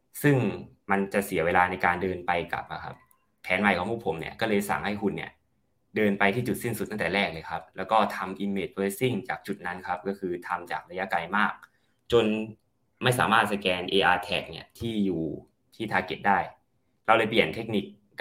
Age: 20-39